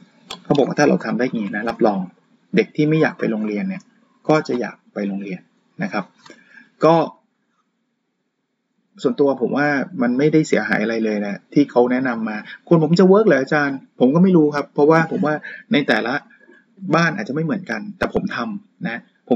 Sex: male